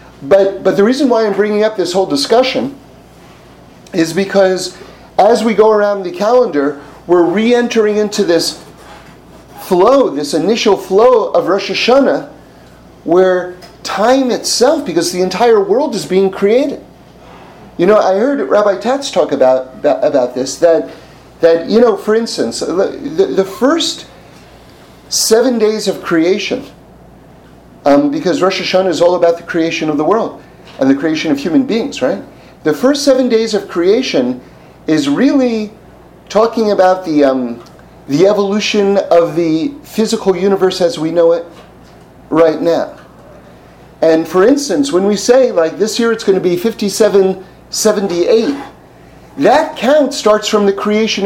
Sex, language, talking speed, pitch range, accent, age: male, English, 150 wpm, 175-230 Hz, American, 40-59